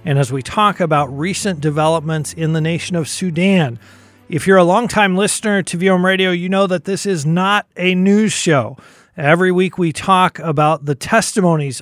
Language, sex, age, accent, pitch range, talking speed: English, male, 40-59, American, 160-200 Hz, 185 wpm